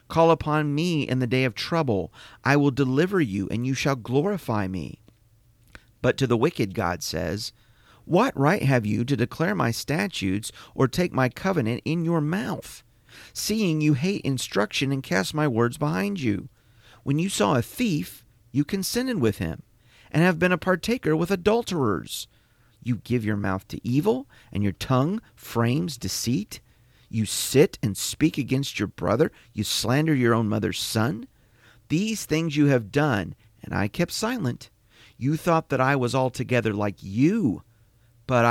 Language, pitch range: English, 115-155 Hz